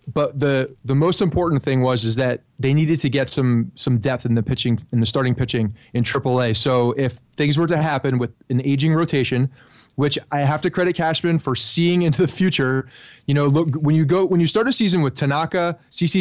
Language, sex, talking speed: English, male, 225 wpm